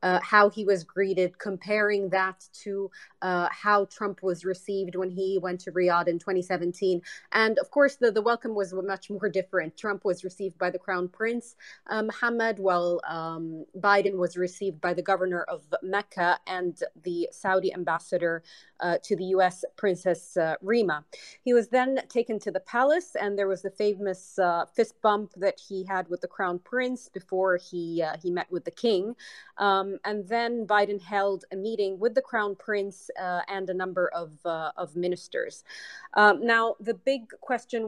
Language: English